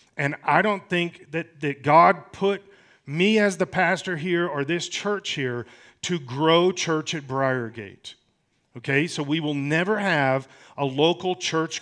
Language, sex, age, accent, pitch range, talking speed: English, male, 40-59, American, 135-180 Hz, 155 wpm